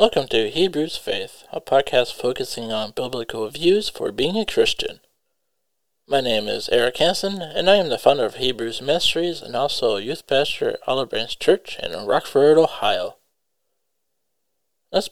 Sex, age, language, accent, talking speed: male, 20-39, English, American, 160 wpm